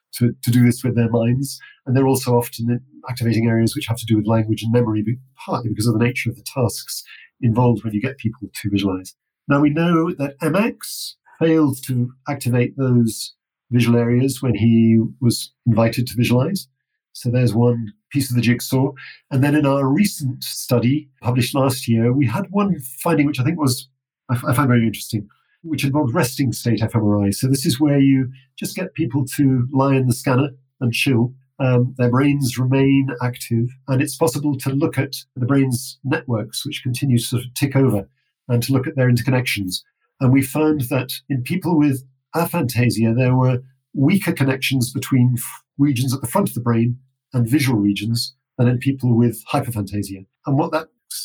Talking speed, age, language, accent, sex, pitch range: 185 wpm, 50-69, English, British, male, 120-140 Hz